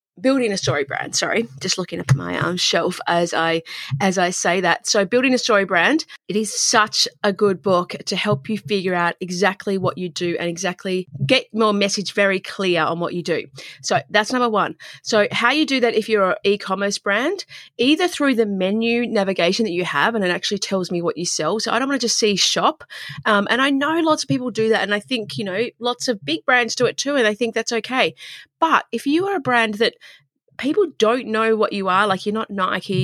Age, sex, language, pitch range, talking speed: 30-49, female, English, 180-235 Hz, 235 wpm